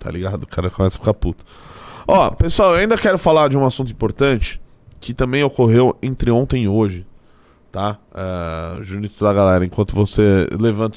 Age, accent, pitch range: 20-39, Brazilian, 100-140 Hz